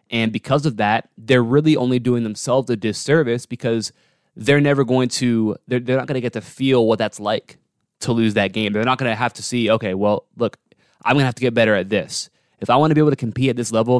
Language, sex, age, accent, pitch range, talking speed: English, male, 20-39, American, 110-140 Hz, 260 wpm